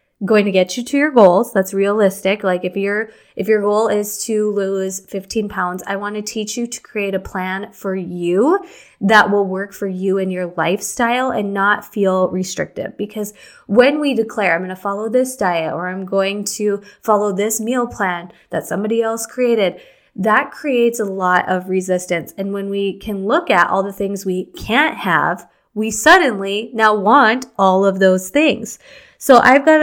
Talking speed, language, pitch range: 190 wpm, English, 190-220 Hz